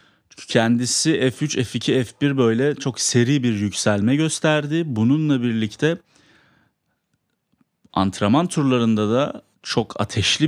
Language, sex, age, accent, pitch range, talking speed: Turkish, male, 30-49, native, 110-140 Hz, 95 wpm